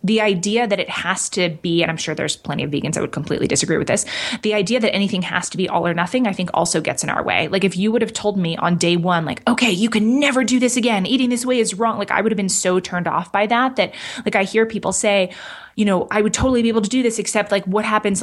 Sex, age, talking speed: female, 20-39, 295 wpm